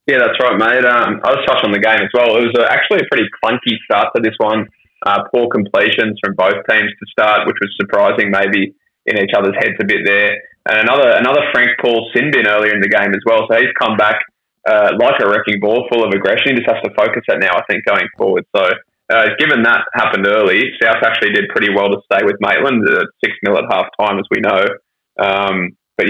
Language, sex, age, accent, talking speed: English, male, 20-39, Australian, 240 wpm